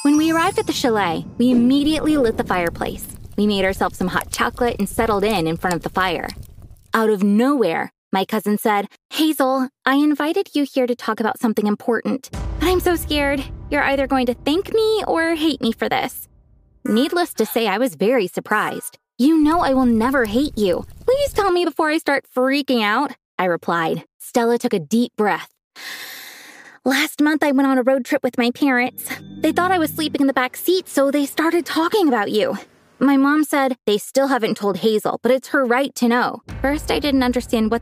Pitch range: 230-305 Hz